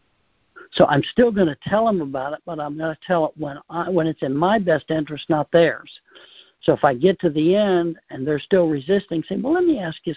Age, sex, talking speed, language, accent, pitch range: 60-79, male, 250 wpm, English, American, 150-180 Hz